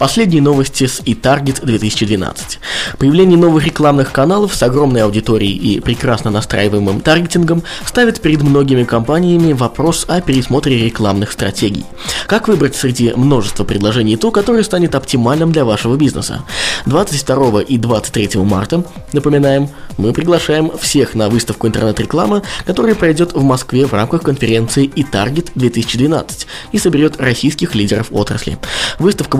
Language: Russian